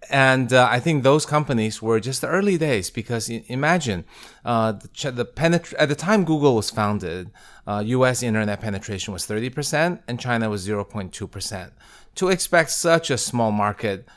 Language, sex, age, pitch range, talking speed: English, male, 30-49, 100-125 Hz, 175 wpm